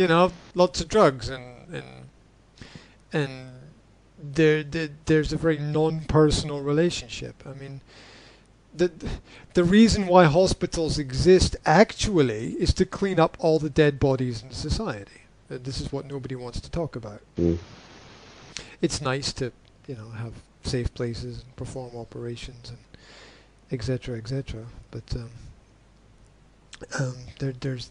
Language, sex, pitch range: English, male, 120-155 Hz